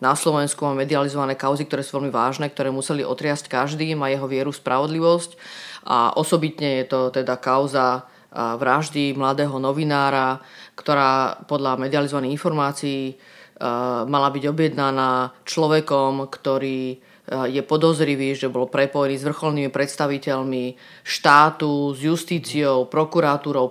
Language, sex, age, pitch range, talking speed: Slovak, female, 30-49, 135-165 Hz, 120 wpm